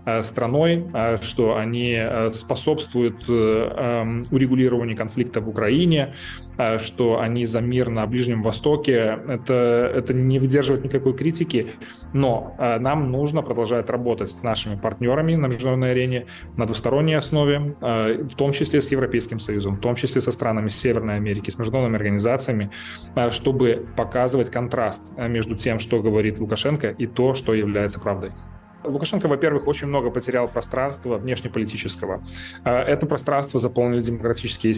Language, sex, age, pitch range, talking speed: Russian, male, 20-39, 110-130 Hz, 130 wpm